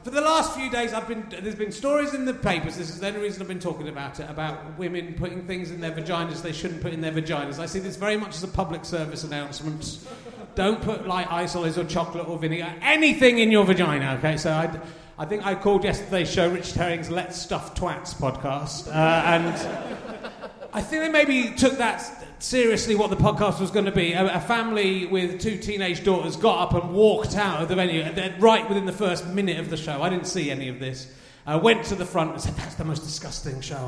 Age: 30-49